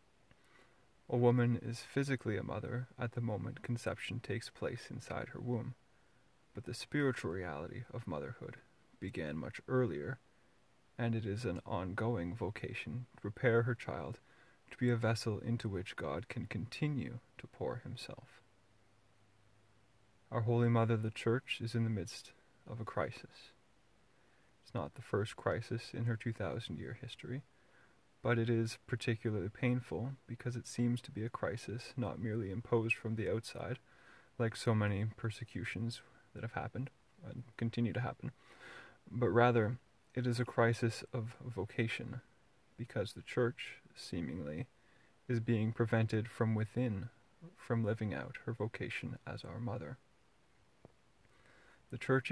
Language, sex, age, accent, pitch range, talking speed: English, male, 30-49, American, 110-125 Hz, 140 wpm